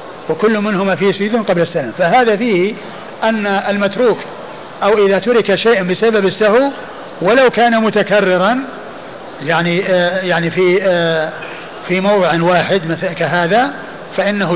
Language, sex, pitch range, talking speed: Arabic, male, 175-220 Hz, 125 wpm